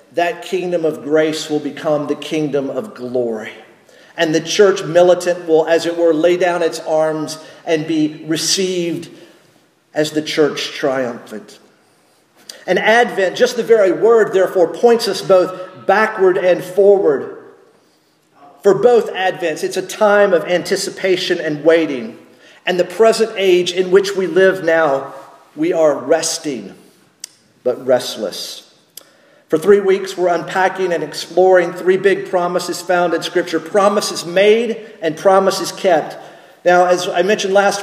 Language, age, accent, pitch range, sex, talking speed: English, 50-69, American, 165-195 Hz, male, 140 wpm